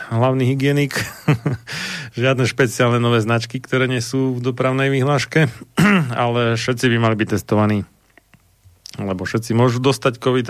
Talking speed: 130 wpm